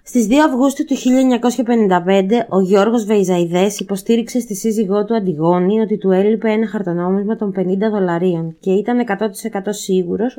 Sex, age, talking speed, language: female, 20-39, 145 wpm, Greek